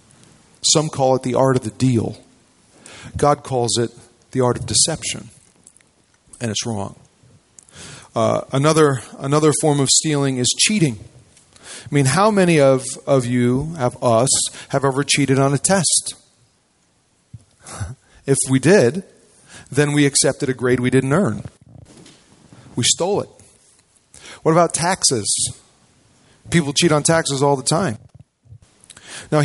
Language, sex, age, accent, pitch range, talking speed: English, male, 40-59, American, 125-160 Hz, 140 wpm